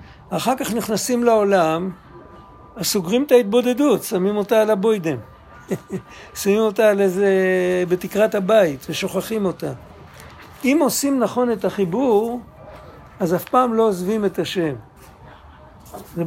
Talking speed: 120 wpm